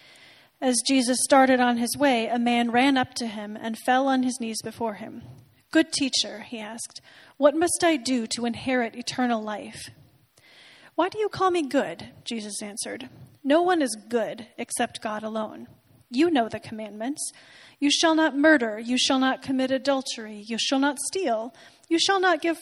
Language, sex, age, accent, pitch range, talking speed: English, female, 30-49, American, 225-280 Hz, 180 wpm